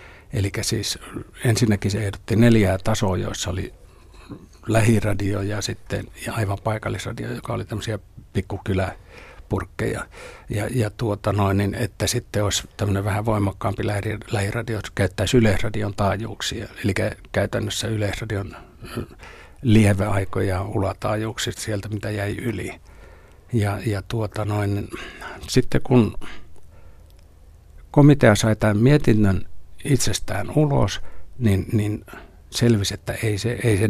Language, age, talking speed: Finnish, 60-79, 110 wpm